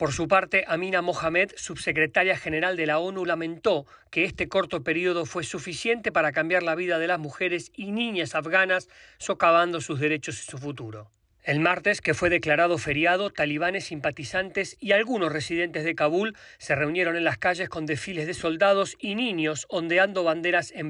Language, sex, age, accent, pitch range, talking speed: Spanish, male, 40-59, Argentinian, 150-180 Hz, 170 wpm